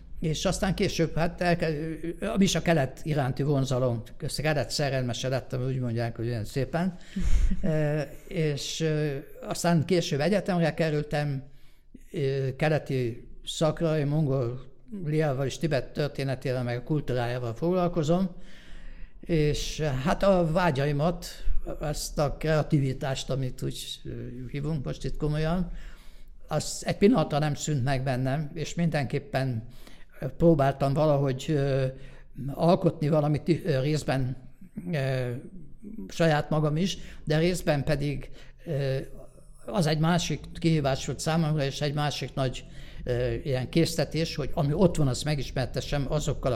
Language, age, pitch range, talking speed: Hungarian, 60-79, 130-160 Hz, 120 wpm